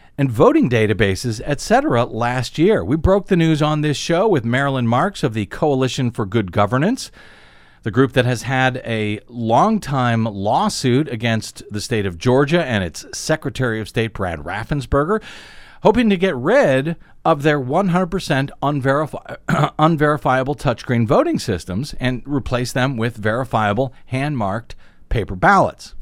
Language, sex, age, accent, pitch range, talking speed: English, male, 50-69, American, 115-160 Hz, 140 wpm